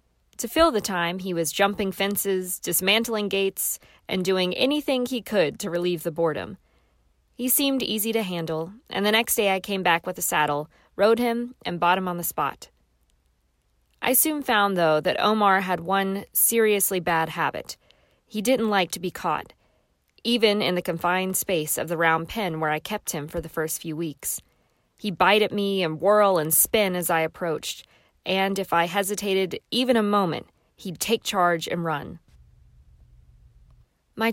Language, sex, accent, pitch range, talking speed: English, female, American, 160-210 Hz, 175 wpm